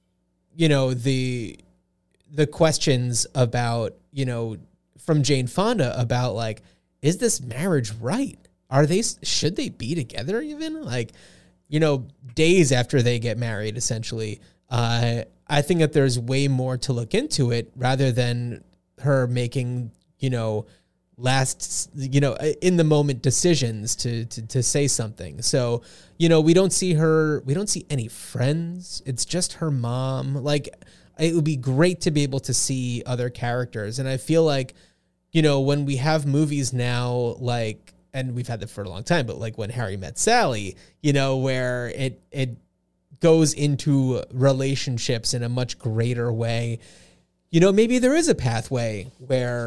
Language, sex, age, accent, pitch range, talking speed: English, male, 20-39, American, 120-150 Hz, 165 wpm